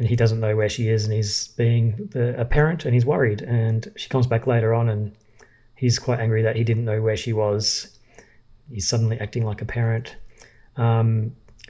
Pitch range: 110-120 Hz